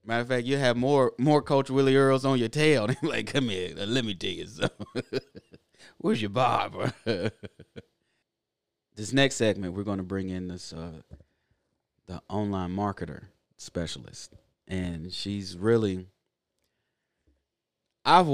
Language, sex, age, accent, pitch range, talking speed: English, male, 30-49, American, 90-120 Hz, 145 wpm